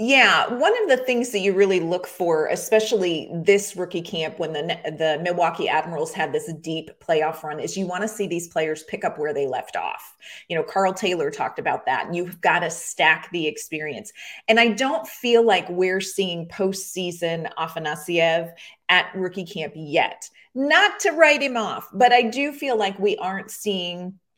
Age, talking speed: 30-49, 185 wpm